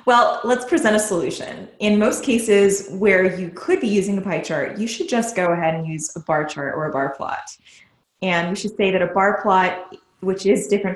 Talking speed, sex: 225 wpm, female